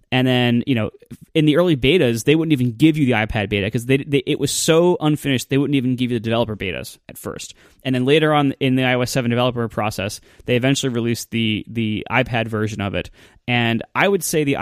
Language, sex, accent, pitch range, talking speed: English, male, American, 110-140 Hz, 235 wpm